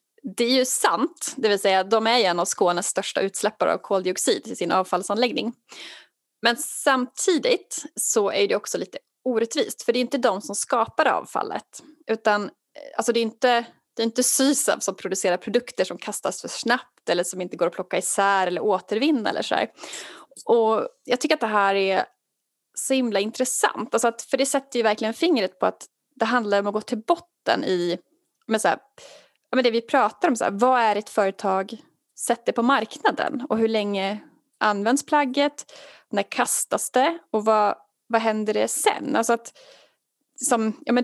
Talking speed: 185 wpm